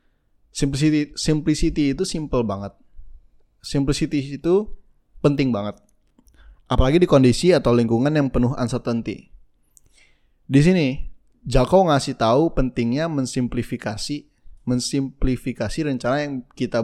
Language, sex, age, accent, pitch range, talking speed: Indonesian, male, 20-39, native, 115-145 Hz, 100 wpm